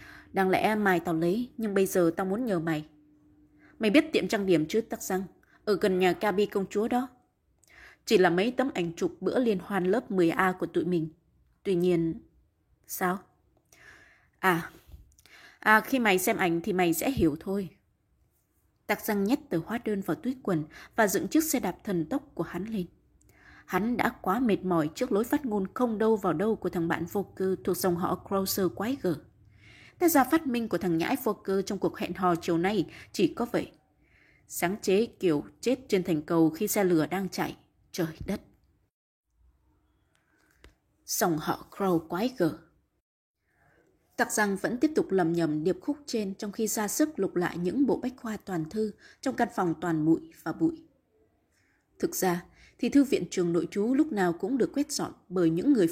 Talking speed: 195 wpm